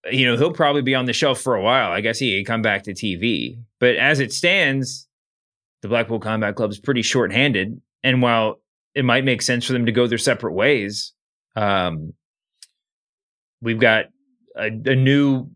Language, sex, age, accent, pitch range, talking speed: English, male, 30-49, American, 115-140 Hz, 190 wpm